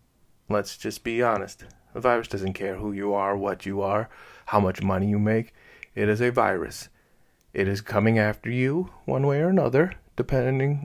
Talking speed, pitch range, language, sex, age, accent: 185 wpm, 95-115 Hz, English, male, 30-49, American